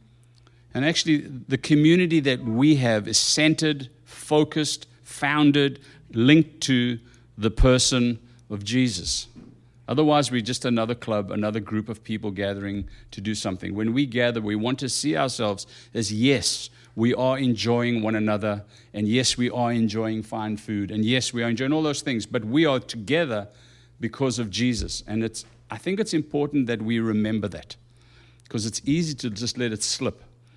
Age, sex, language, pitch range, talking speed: 50-69, male, English, 110-130 Hz, 165 wpm